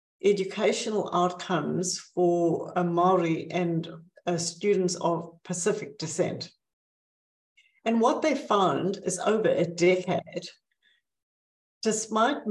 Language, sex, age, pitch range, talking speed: English, female, 60-79, 170-200 Hz, 95 wpm